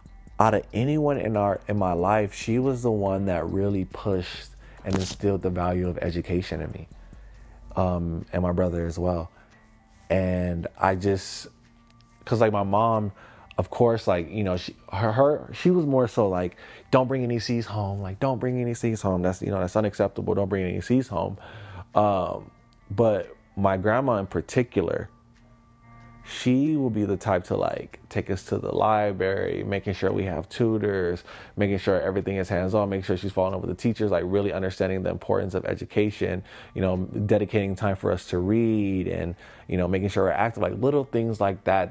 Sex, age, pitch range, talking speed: male, 20-39, 90-110 Hz, 190 wpm